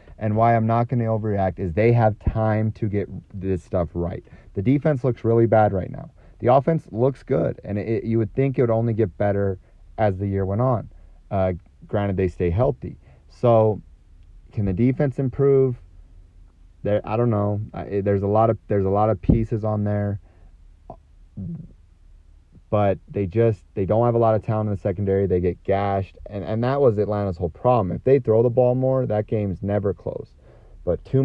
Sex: male